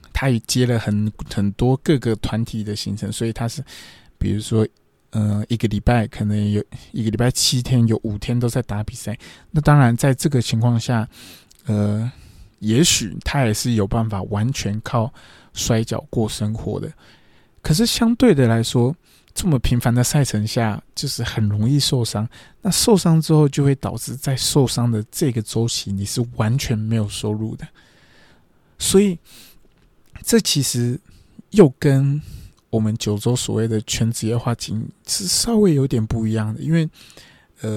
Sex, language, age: male, Chinese, 20-39